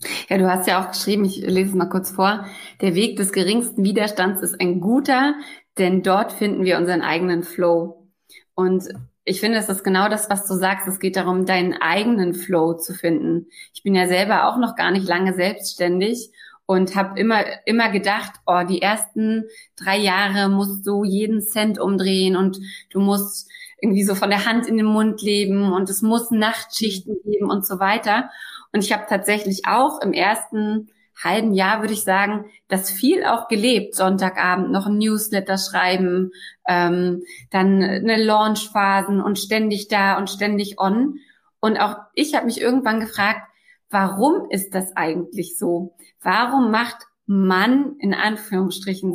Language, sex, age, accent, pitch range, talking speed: German, female, 20-39, German, 190-220 Hz, 170 wpm